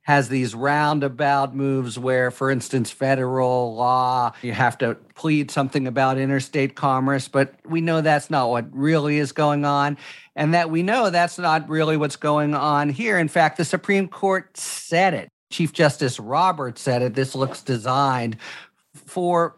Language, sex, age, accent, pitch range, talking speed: English, male, 50-69, American, 125-155 Hz, 165 wpm